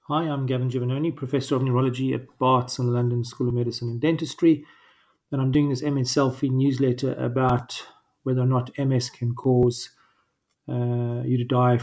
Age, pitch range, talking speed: 40-59, 125-135 Hz, 180 wpm